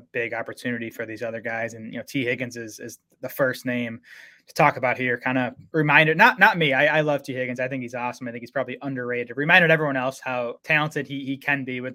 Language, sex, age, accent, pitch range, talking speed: English, male, 20-39, American, 120-140 Hz, 250 wpm